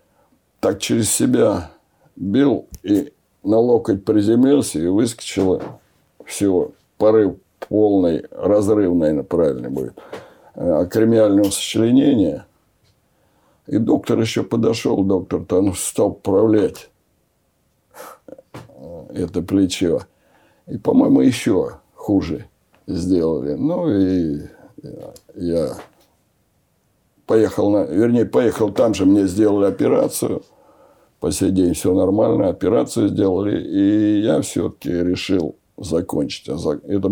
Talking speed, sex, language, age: 95 wpm, male, Russian, 60-79